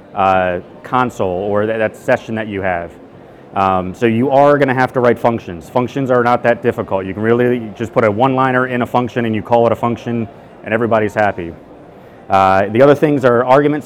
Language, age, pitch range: English, 30-49, 110-130 Hz